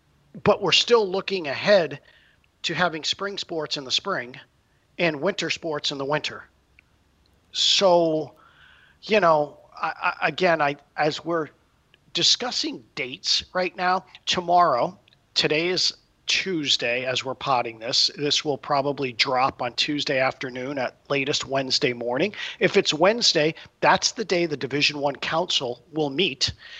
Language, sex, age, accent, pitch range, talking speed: English, male, 40-59, American, 145-185 Hz, 140 wpm